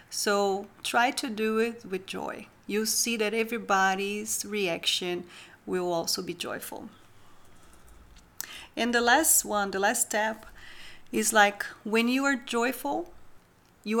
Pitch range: 195-230 Hz